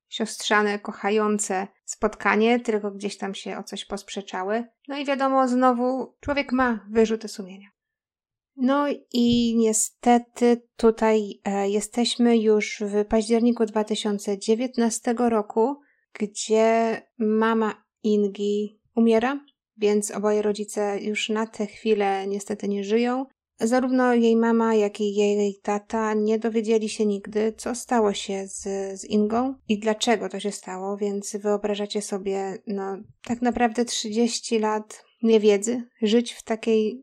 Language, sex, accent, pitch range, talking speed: Polish, female, native, 205-230 Hz, 125 wpm